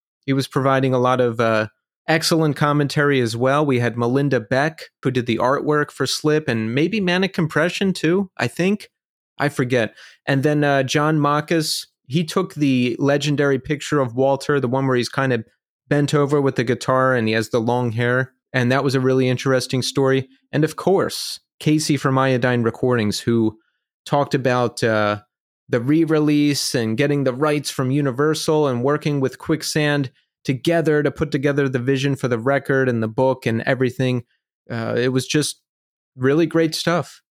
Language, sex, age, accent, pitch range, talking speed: English, male, 30-49, American, 125-150 Hz, 175 wpm